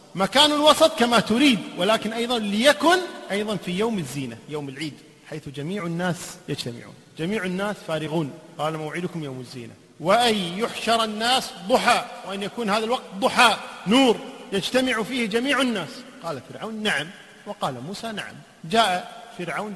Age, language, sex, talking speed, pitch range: 40-59, Arabic, male, 140 wpm, 180-230 Hz